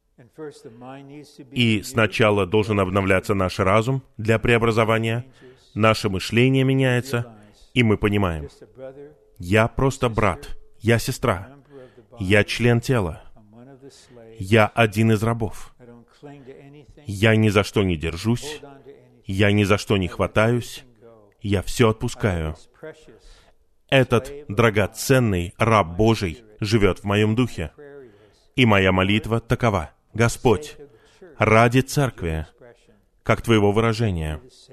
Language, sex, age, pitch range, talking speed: Russian, male, 30-49, 105-130 Hz, 100 wpm